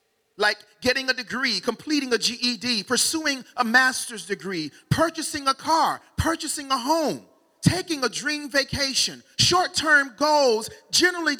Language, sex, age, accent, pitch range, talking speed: English, male, 40-59, American, 210-280 Hz, 125 wpm